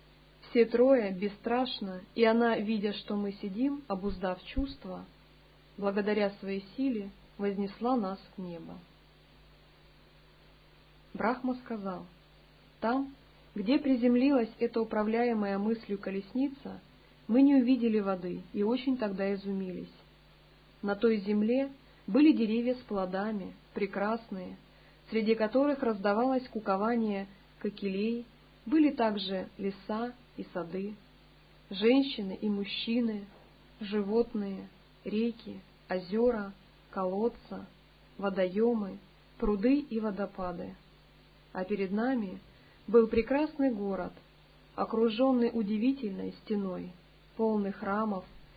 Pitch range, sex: 195-235 Hz, female